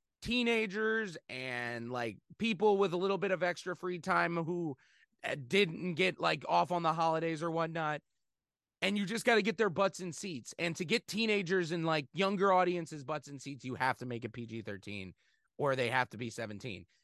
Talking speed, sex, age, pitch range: 195 wpm, male, 30-49, 140-195 Hz